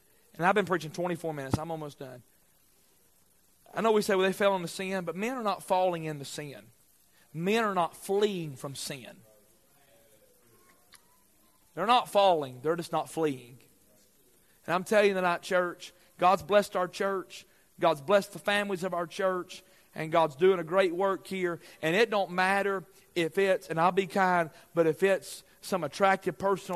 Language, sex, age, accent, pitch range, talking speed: English, male, 40-59, American, 160-205 Hz, 175 wpm